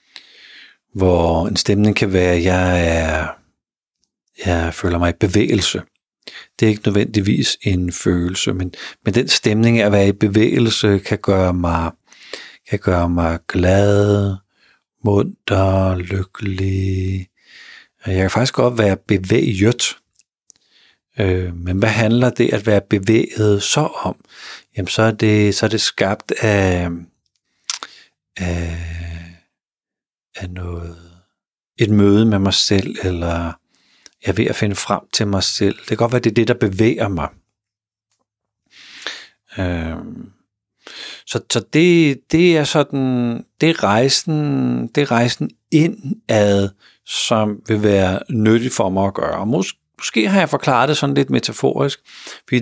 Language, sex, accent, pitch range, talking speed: Danish, male, native, 90-115 Hz, 140 wpm